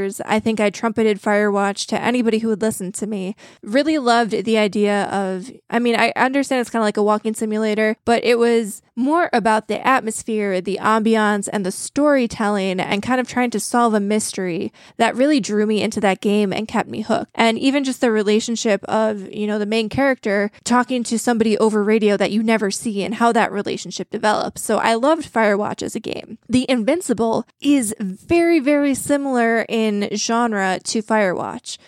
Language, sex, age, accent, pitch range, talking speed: English, female, 20-39, American, 205-240 Hz, 190 wpm